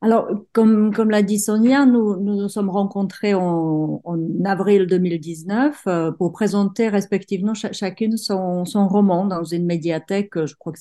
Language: French